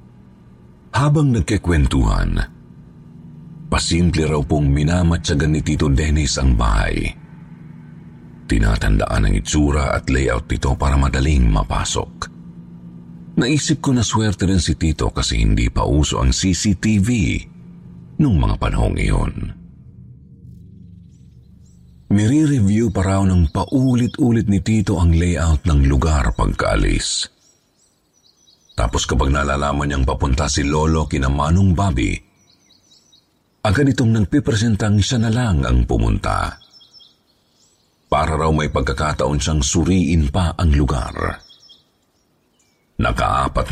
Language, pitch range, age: Filipino, 70-100 Hz, 50-69